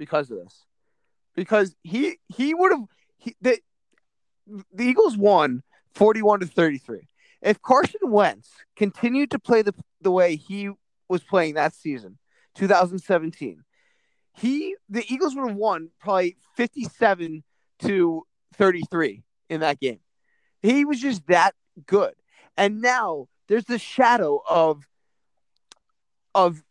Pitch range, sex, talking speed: 170-255 Hz, male, 125 wpm